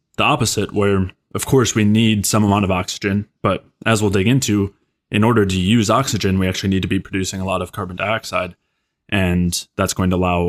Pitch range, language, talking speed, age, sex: 95-105 Hz, English, 210 wpm, 20-39, male